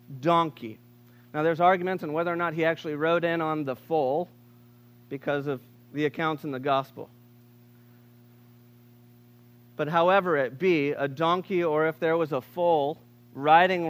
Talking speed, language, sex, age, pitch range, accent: 150 wpm, English, male, 40-59, 120-170 Hz, American